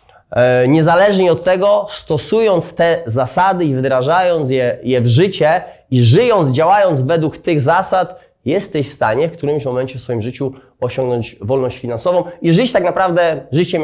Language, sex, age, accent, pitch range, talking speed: Polish, male, 20-39, native, 140-185 Hz, 150 wpm